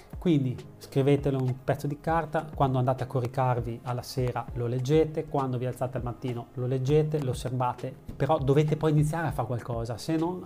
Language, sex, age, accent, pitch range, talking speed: Italian, male, 30-49, native, 125-150 Hz, 185 wpm